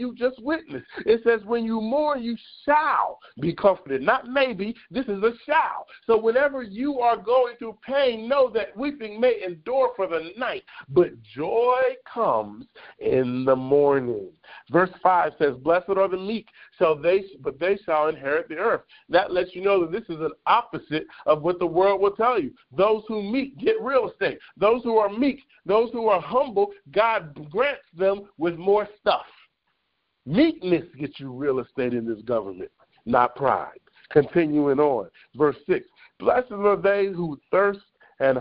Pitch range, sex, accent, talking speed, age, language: 145-240 Hz, male, American, 170 wpm, 50-69, English